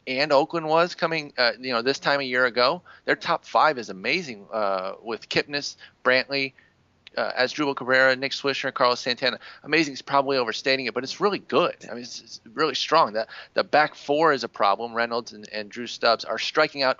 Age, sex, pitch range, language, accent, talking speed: 30-49, male, 115-135 Hz, English, American, 210 wpm